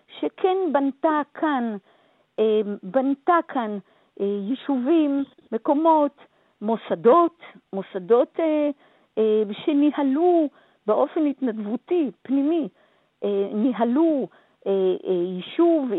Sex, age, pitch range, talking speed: female, 50-69, 200-300 Hz, 55 wpm